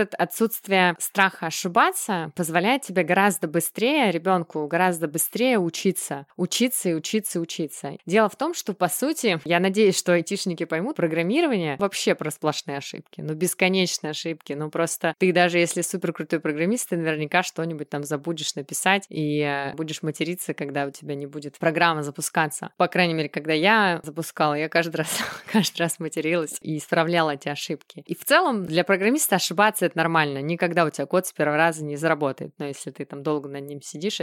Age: 20-39